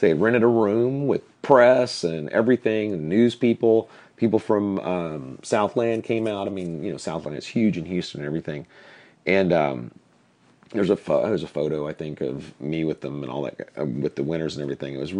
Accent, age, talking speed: American, 40-59, 215 wpm